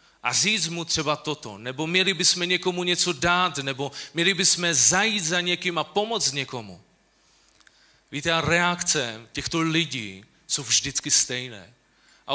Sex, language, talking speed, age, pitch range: male, Czech, 140 wpm, 30-49, 130-170 Hz